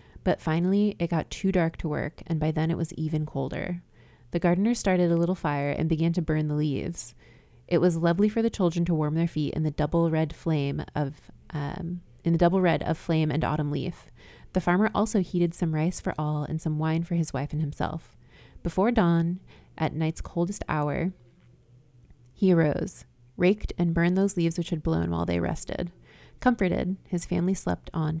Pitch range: 150-175 Hz